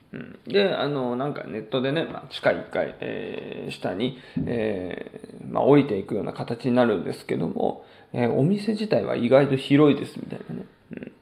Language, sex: Japanese, male